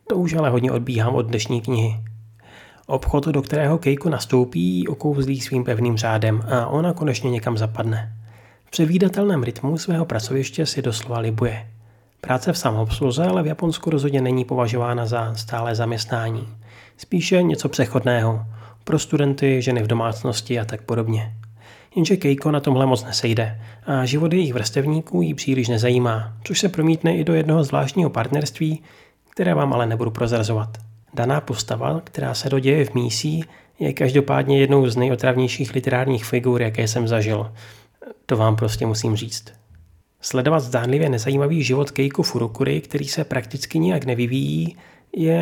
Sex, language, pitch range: male, Czech, 115-145 Hz